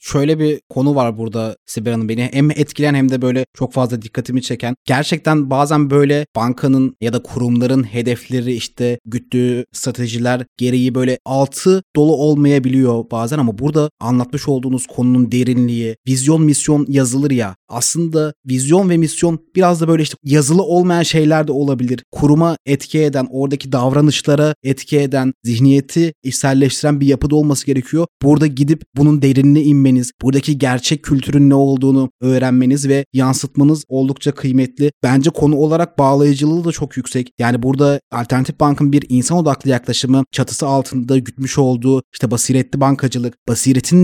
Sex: male